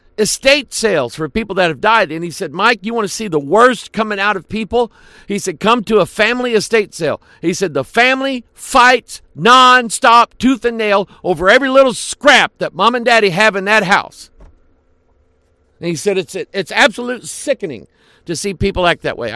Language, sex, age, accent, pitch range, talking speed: English, male, 50-69, American, 185-250 Hz, 200 wpm